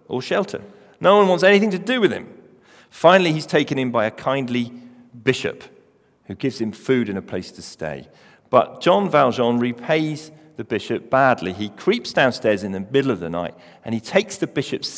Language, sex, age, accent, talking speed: English, male, 40-59, British, 190 wpm